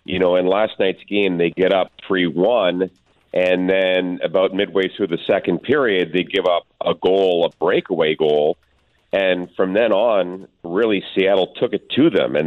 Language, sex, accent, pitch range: English, male, American, 85-95 Hz